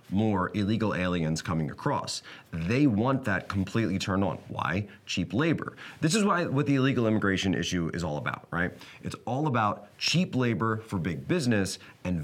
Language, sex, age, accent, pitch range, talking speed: English, male, 30-49, American, 90-115 Hz, 170 wpm